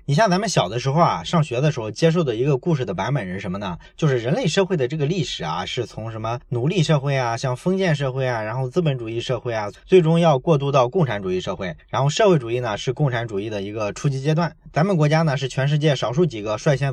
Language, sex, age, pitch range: Chinese, male, 20-39, 125-165 Hz